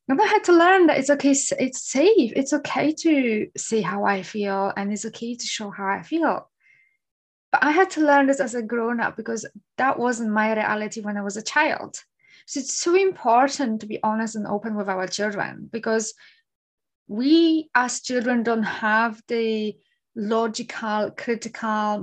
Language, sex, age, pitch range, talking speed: English, female, 20-39, 215-270 Hz, 175 wpm